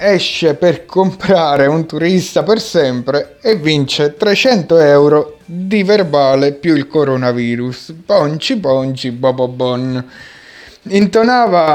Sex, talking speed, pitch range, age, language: male, 100 wpm, 130-190 Hz, 30-49, Italian